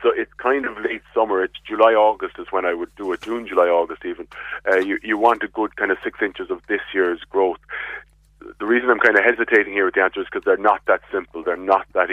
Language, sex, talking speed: English, male, 240 wpm